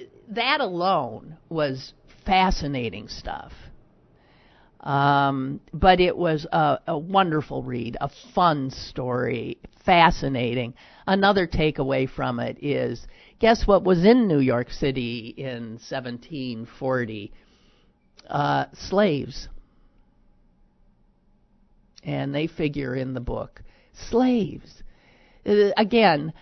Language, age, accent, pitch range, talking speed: English, 50-69, American, 125-175 Hz, 95 wpm